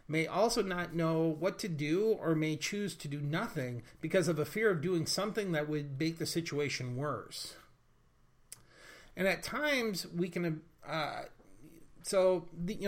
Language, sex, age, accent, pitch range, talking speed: English, male, 40-59, American, 140-175 Hz, 160 wpm